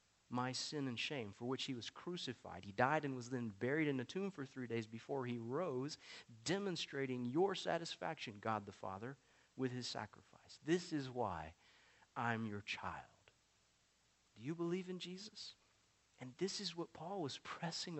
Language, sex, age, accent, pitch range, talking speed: English, male, 40-59, American, 115-155 Hz, 170 wpm